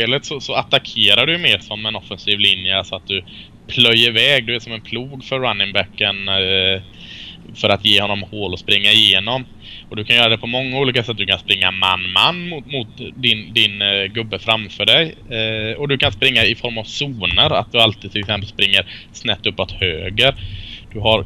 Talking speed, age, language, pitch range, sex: 205 wpm, 20-39, Swedish, 105-125 Hz, male